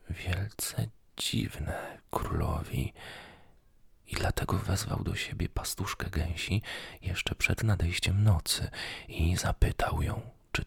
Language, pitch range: Polish, 80-105 Hz